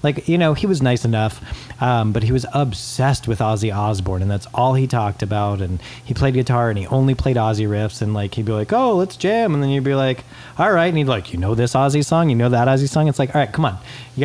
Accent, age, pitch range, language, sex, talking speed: American, 30-49, 110-135 Hz, English, male, 280 wpm